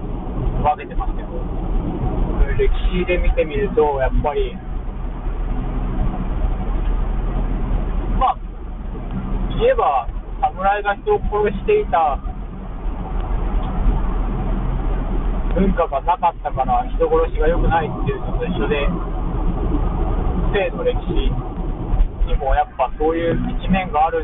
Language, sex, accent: Japanese, male, native